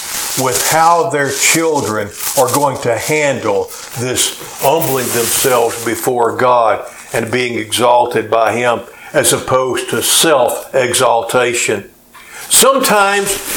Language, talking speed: English, 100 wpm